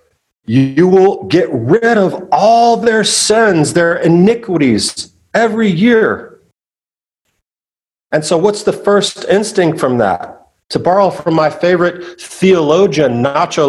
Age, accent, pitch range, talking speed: 40-59, American, 160-225 Hz, 120 wpm